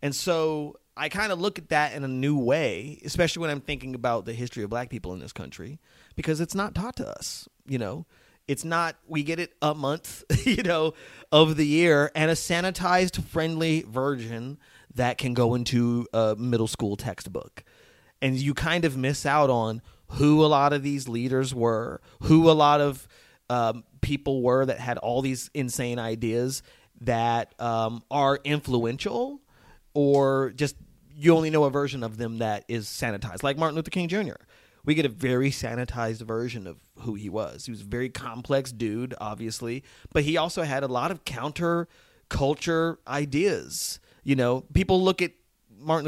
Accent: American